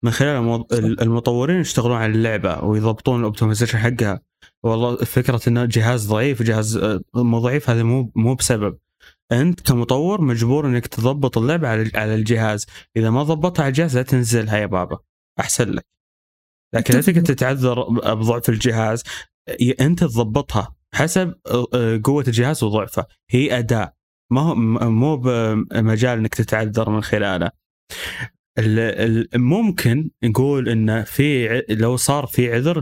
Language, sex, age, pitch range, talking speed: Arabic, male, 20-39, 110-130 Hz, 125 wpm